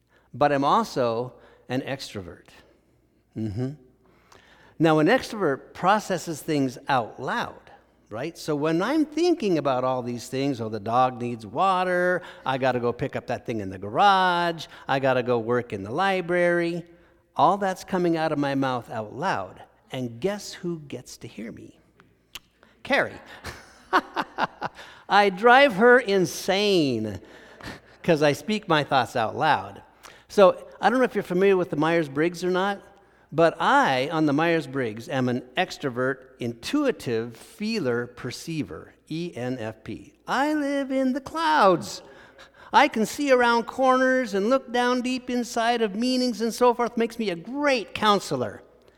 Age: 50-69